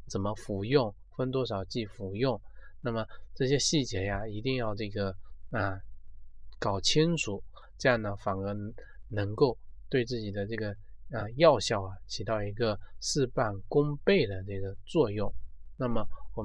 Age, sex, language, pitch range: 20-39, male, Chinese, 100-130 Hz